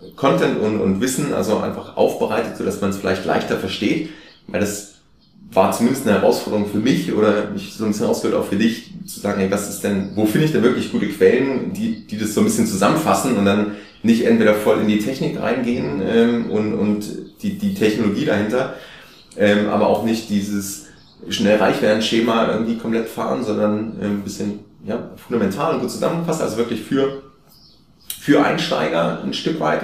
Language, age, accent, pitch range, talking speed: German, 30-49, German, 105-135 Hz, 190 wpm